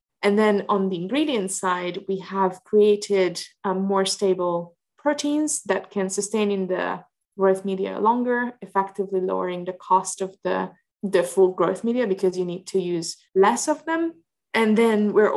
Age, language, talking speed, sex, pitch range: 20-39, English, 165 wpm, female, 180-210 Hz